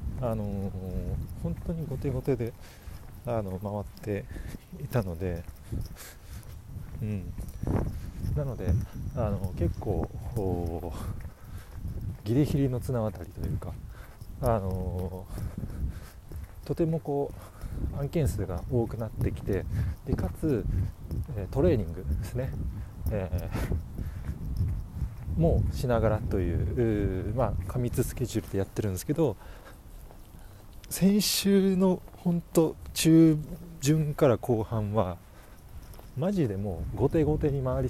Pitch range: 90-120 Hz